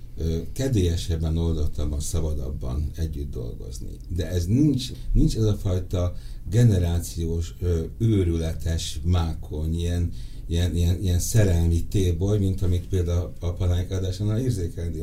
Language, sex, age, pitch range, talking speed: Hungarian, male, 60-79, 85-110 Hz, 110 wpm